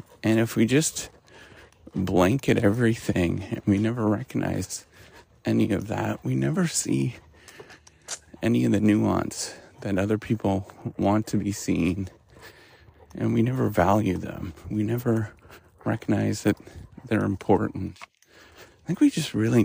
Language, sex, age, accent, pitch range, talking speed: English, male, 40-59, American, 95-115 Hz, 130 wpm